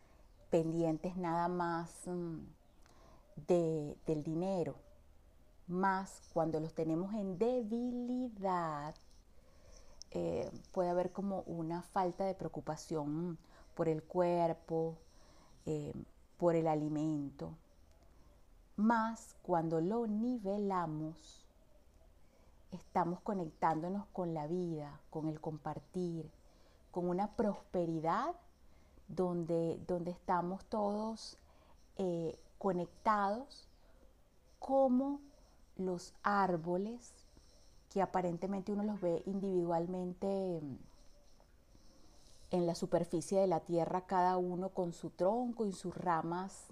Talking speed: 95 wpm